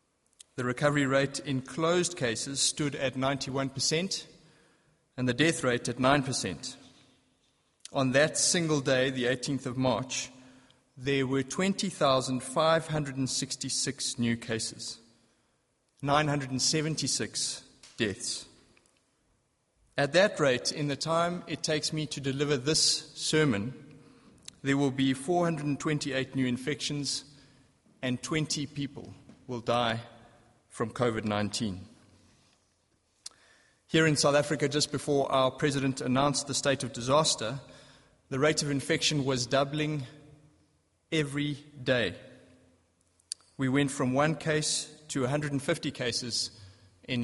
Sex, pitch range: male, 120-150 Hz